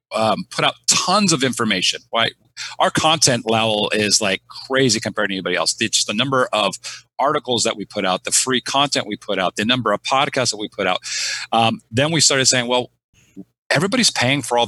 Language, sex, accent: English, male, American